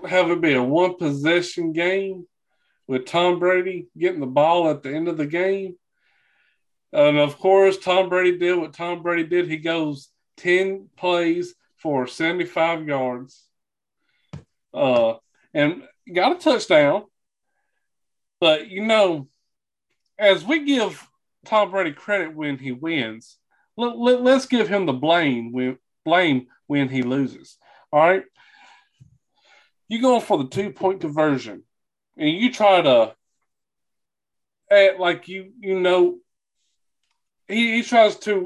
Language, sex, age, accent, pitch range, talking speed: English, male, 40-59, American, 150-210 Hz, 130 wpm